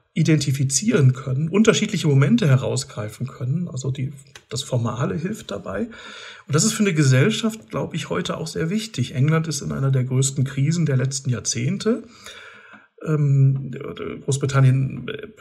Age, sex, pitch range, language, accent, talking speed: 40-59, male, 130-155 Hz, German, German, 130 wpm